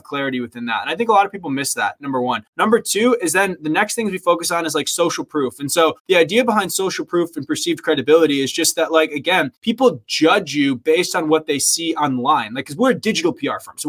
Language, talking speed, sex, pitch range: English, 260 wpm, male, 150-210 Hz